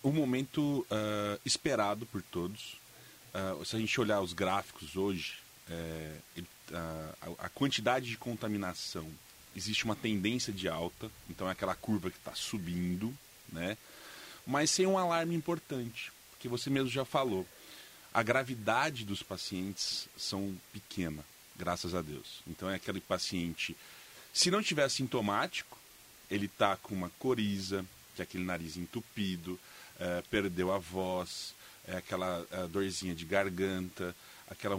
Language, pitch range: Portuguese, 95-125 Hz